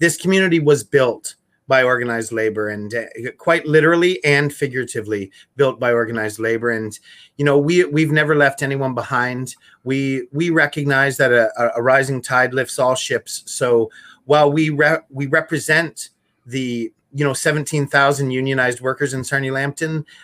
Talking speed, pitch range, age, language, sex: 155 wpm, 120-150 Hz, 30-49, English, male